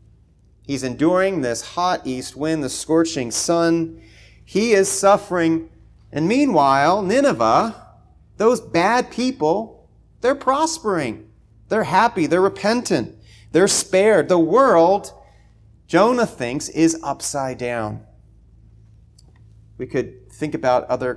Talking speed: 110 wpm